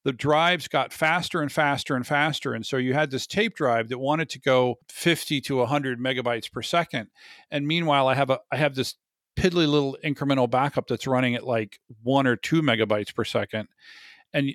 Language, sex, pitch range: English, male, 120-150 Hz